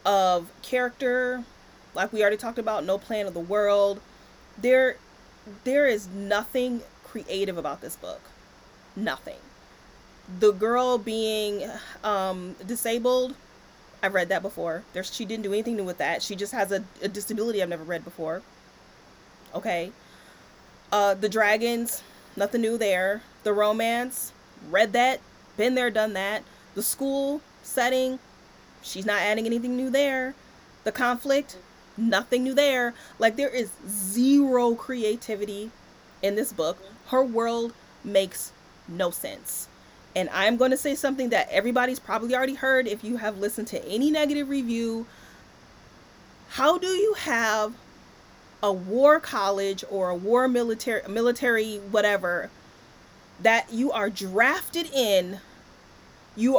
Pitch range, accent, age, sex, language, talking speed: 205-250 Hz, American, 20-39, female, English, 135 wpm